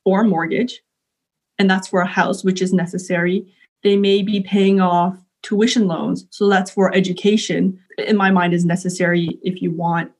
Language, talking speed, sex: English, 170 wpm, female